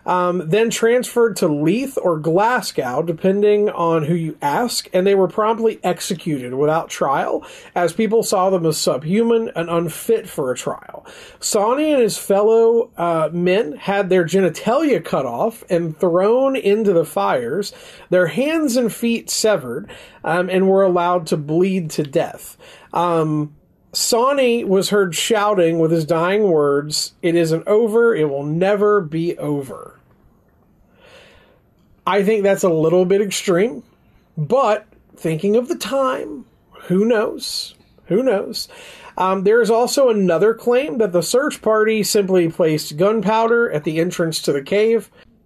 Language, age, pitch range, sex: English, 40-59, 170-230 Hz, male